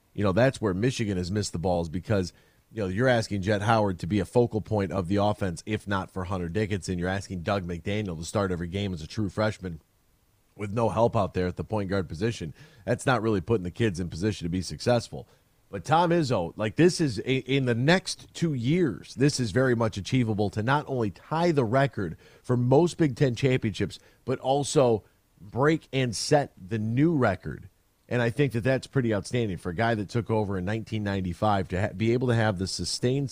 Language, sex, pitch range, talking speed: English, male, 100-135 Hz, 215 wpm